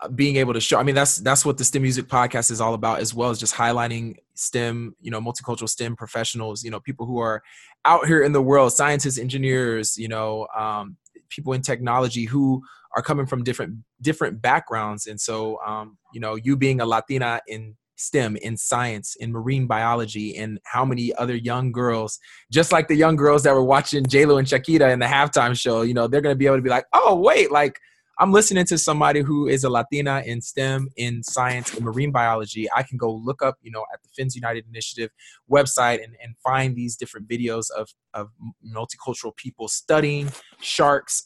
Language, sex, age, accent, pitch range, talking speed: English, male, 20-39, American, 115-140 Hz, 205 wpm